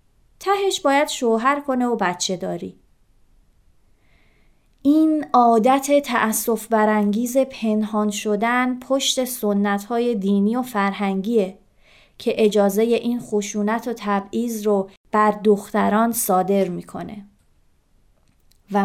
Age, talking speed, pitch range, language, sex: 30-49, 100 wpm, 200-245 Hz, Persian, female